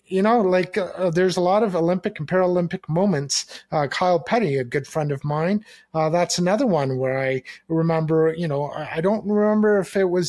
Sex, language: male, English